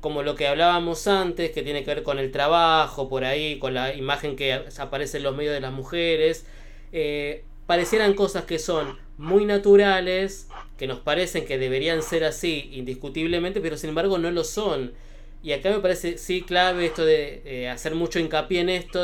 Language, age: Spanish, 20-39